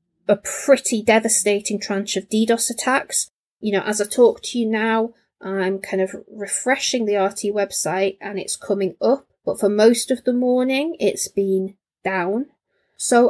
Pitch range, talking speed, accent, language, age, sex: 195-230 Hz, 165 wpm, British, English, 30-49, female